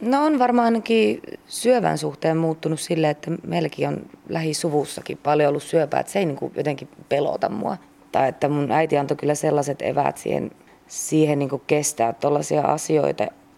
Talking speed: 160 wpm